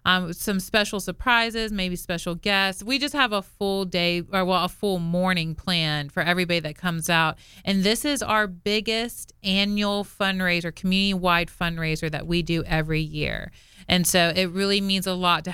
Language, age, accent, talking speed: English, 30-49, American, 180 wpm